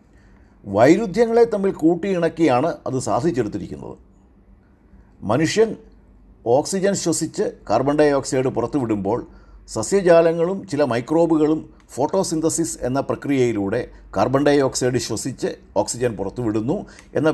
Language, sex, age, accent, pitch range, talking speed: Malayalam, male, 50-69, native, 110-155 Hz, 85 wpm